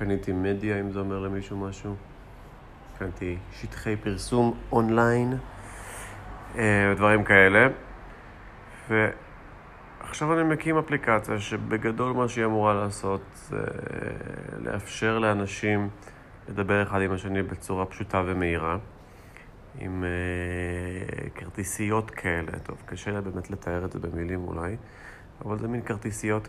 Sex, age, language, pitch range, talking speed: male, 30-49, Hebrew, 95-110 Hz, 105 wpm